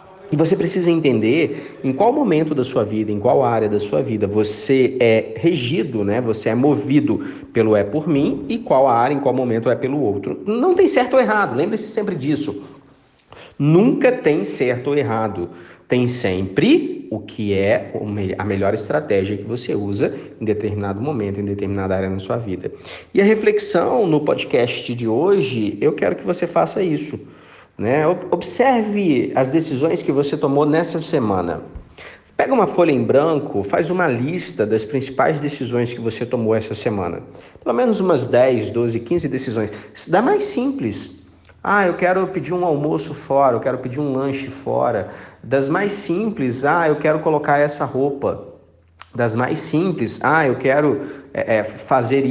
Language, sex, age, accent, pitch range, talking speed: Portuguese, male, 40-59, Brazilian, 110-170 Hz, 165 wpm